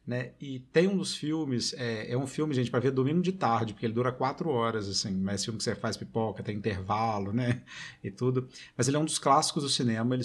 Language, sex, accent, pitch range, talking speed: Portuguese, male, Brazilian, 115-150 Hz, 245 wpm